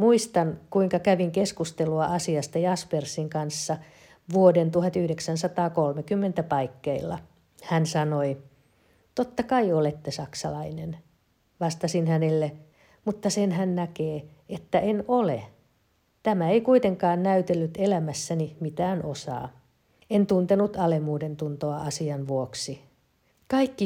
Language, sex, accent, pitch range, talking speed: Finnish, female, native, 150-190 Hz, 100 wpm